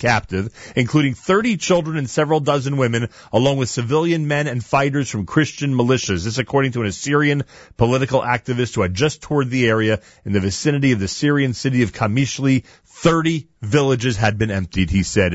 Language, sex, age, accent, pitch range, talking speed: English, male, 40-59, American, 110-145 Hz, 180 wpm